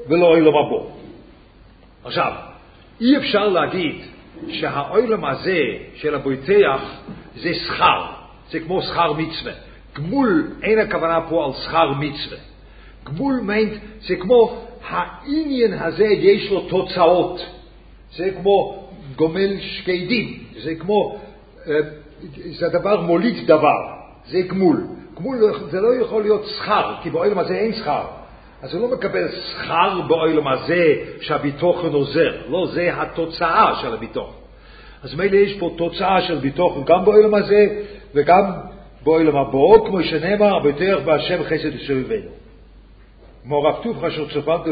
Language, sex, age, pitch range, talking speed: English, male, 50-69, 150-205 Hz, 125 wpm